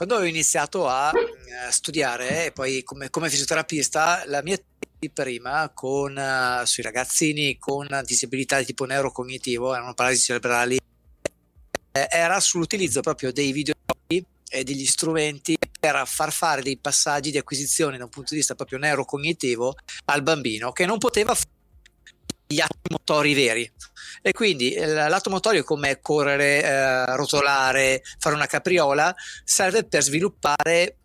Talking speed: 135 wpm